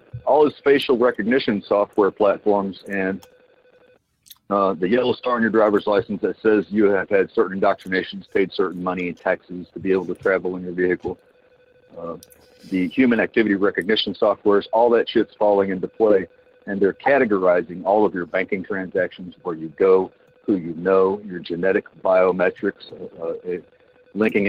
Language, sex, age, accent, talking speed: English, male, 50-69, American, 165 wpm